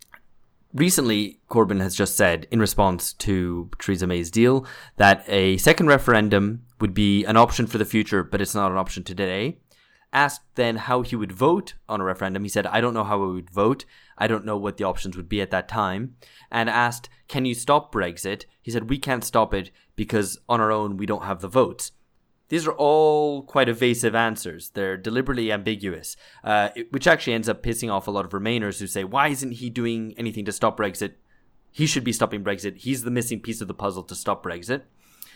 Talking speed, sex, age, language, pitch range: 210 wpm, male, 20-39, English, 100-120 Hz